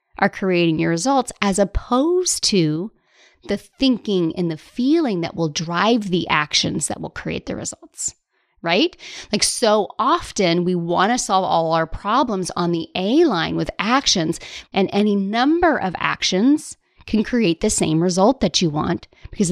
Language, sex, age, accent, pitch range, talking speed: English, female, 30-49, American, 185-290 Hz, 165 wpm